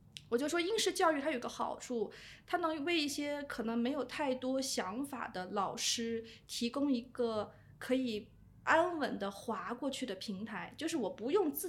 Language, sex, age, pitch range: Chinese, female, 20-39, 220-280 Hz